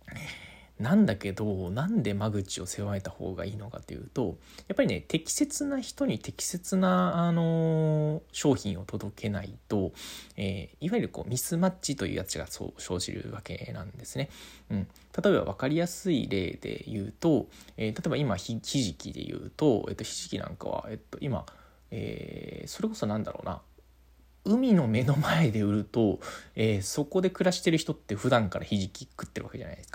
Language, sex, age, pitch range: Japanese, male, 20-39, 100-155 Hz